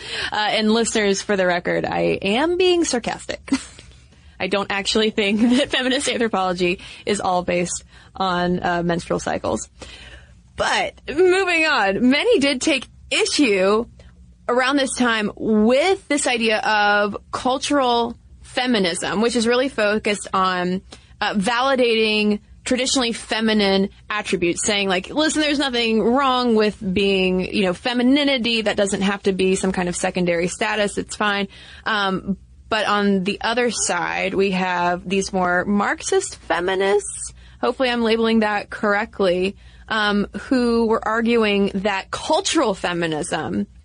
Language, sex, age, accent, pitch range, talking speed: English, female, 20-39, American, 190-240 Hz, 135 wpm